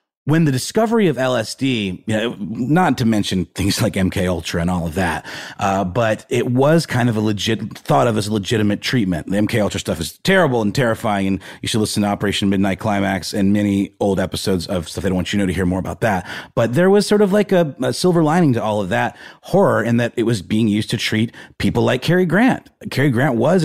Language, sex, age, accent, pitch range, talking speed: English, male, 30-49, American, 95-125 Hz, 230 wpm